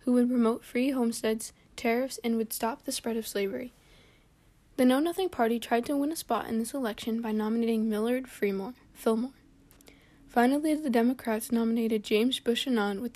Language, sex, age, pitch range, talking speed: English, female, 10-29, 220-250 Hz, 165 wpm